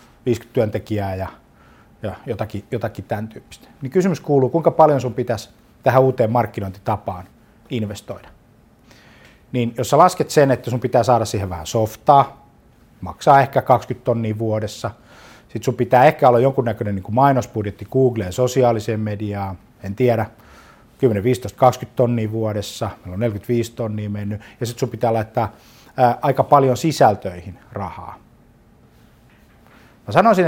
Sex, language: male, Finnish